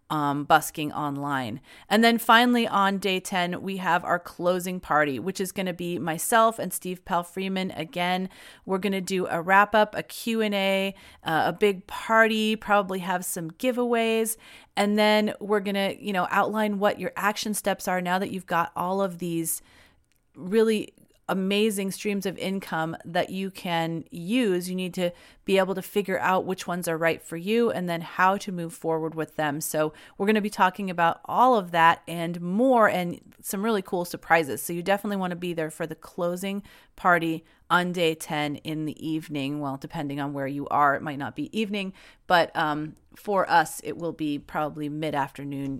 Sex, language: female, English